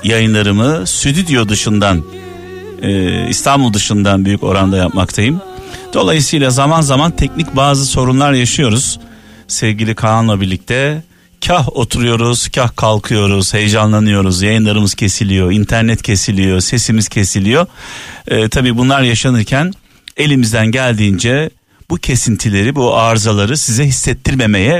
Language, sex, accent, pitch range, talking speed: Turkish, male, native, 105-140 Hz, 100 wpm